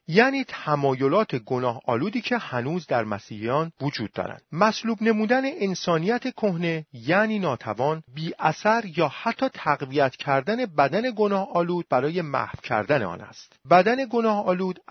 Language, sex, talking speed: Persian, male, 135 wpm